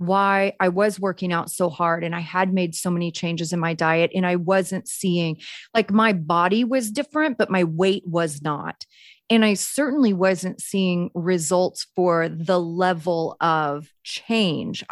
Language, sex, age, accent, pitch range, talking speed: English, female, 30-49, American, 170-210 Hz, 170 wpm